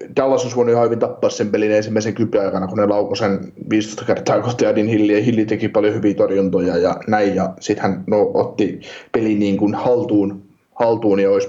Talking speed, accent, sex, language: 195 wpm, native, male, Finnish